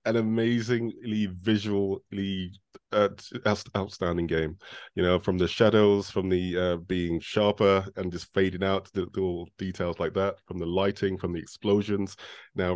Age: 30-49